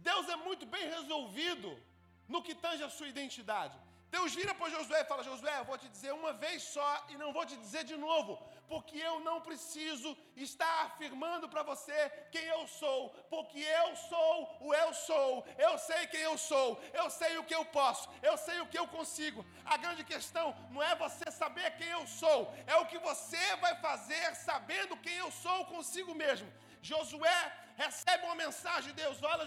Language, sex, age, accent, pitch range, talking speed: Gujarati, male, 40-59, Brazilian, 300-340 Hz, 195 wpm